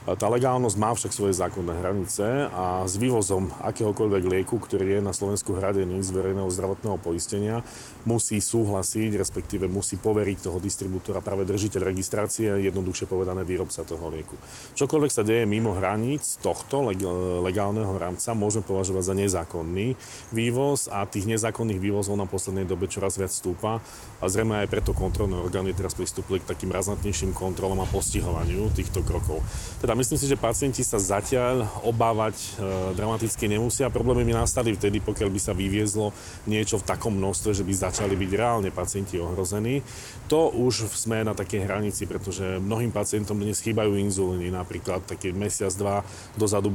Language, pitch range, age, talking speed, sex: Slovak, 95-110 Hz, 40-59, 155 wpm, male